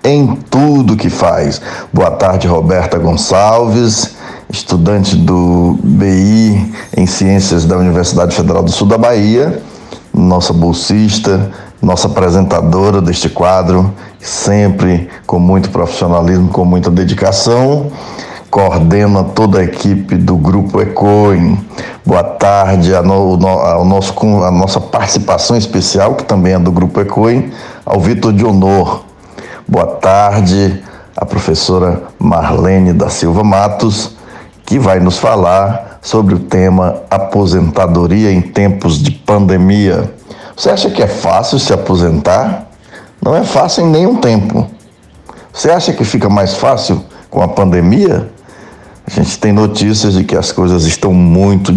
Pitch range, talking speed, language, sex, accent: 90-105 Hz, 125 wpm, Portuguese, male, Brazilian